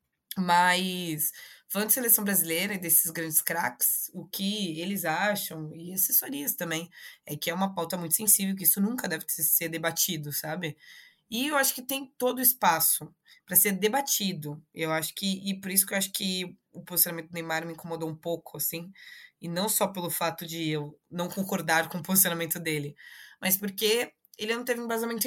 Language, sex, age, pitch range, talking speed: Portuguese, female, 20-39, 160-195 Hz, 185 wpm